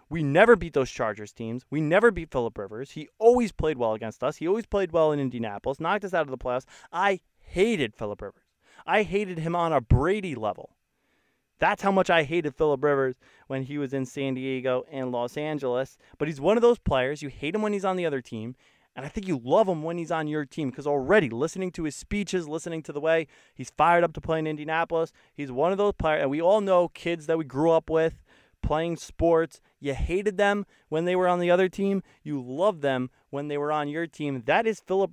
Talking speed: 235 wpm